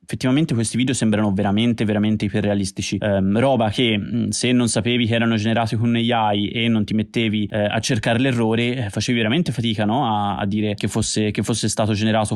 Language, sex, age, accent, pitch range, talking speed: Italian, male, 20-39, native, 105-120 Hz, 190 wpm